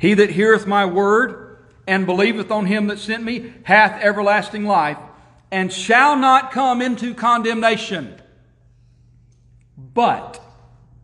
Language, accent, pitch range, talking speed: English, American, 115-185 Hz, 120 wpm